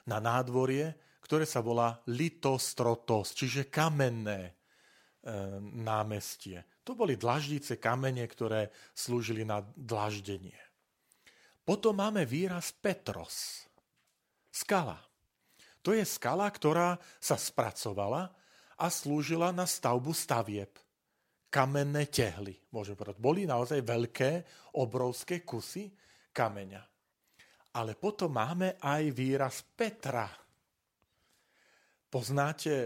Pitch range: 115-155 Hz